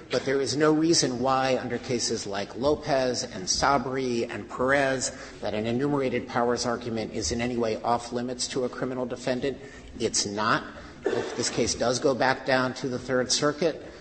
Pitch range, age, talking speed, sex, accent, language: 115-135 Hz, 50-69, 180 wpm, male, American, English